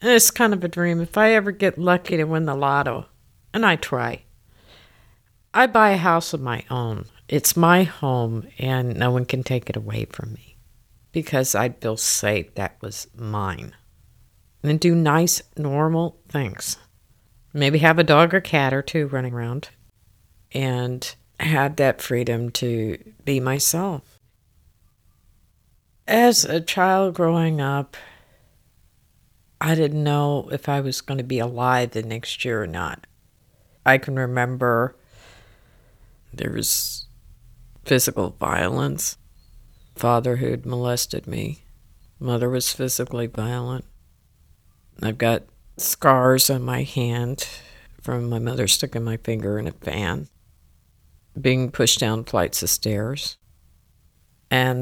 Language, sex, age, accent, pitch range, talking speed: English, female, 50-69, American, 110-145 Hz, 135 wpm